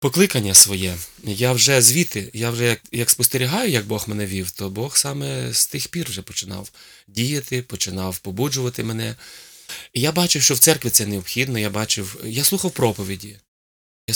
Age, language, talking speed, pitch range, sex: 20-39, Ukrainian, 170 wpm, 100-135 Hz, male